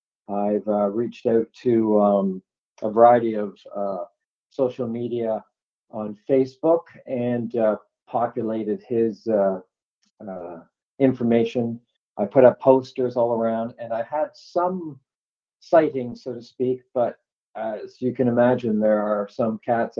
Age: 40-59